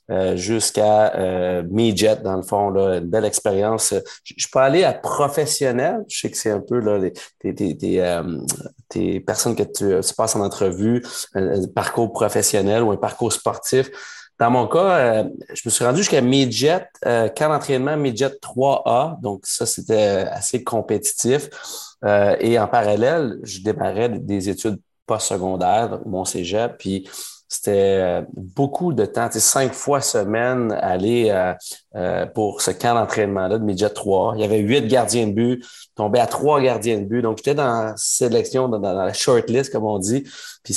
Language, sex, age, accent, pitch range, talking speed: French, male, 30-49, Canadian, 100-120 Hz, 180 wpm